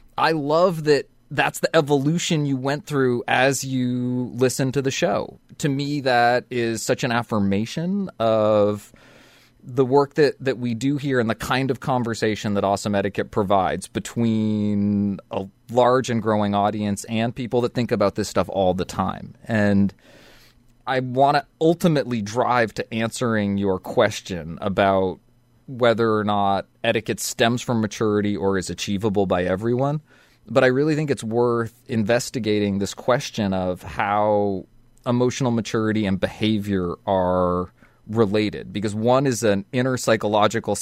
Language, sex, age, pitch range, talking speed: English, male, 30-49, 100-125 Hz, 150 wpm